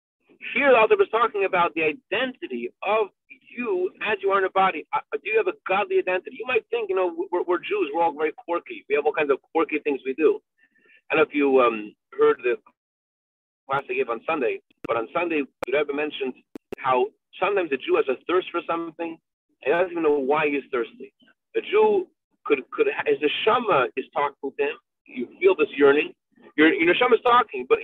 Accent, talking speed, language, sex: American, 215 wpm, English, male